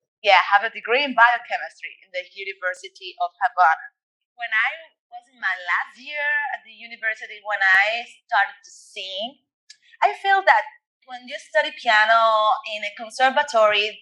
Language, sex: English, female